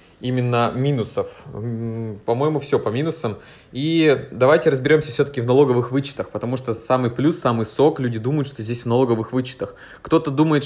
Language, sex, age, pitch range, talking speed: Russian, male, 20-39, 120-145 Hz, 160 wpm